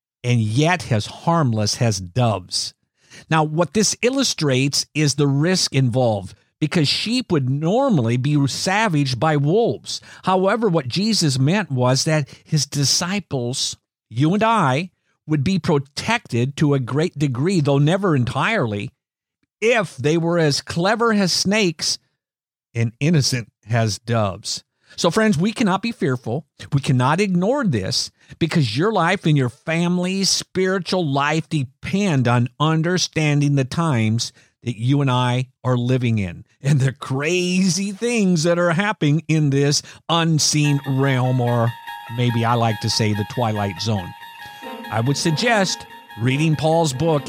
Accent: American